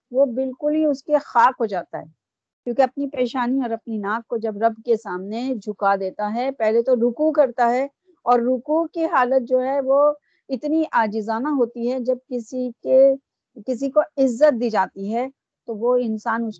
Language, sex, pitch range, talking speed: Urdu, female, 210-270 Hz, 190 wpm